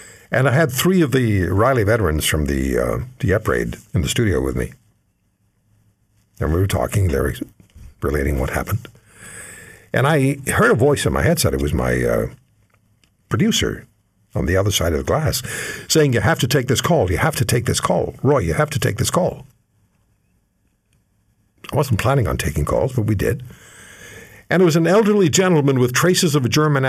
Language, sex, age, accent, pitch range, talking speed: English, male, 60-79, American, 100-135 Hz, 195 wpm